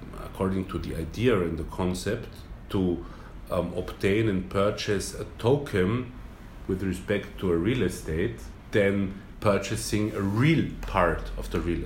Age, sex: 40-59, male